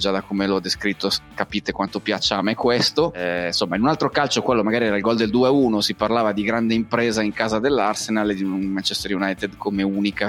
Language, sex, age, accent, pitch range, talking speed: Italian, male, 20-39, native, 100-115 Hz, 225 wpm